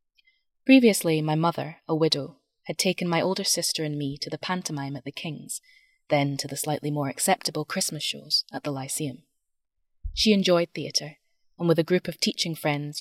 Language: English